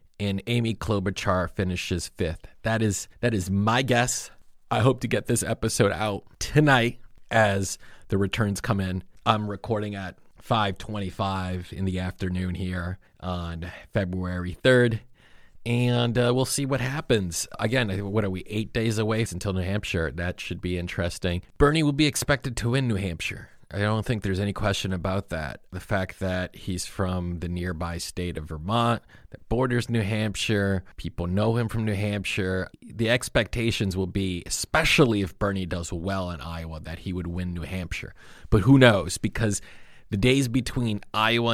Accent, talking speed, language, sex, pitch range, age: American, 165 wpm, English, male, 90-115 Hz, 30-49